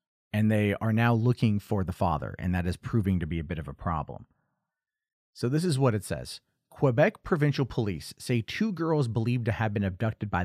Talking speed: 215 wpm